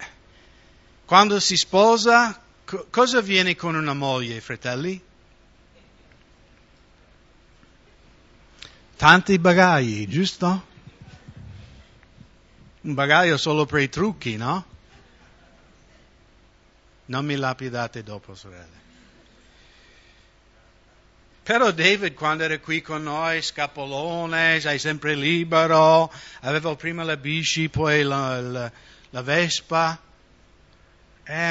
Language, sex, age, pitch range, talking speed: English, male, 60-79, 140-165 Hz, 90 wpm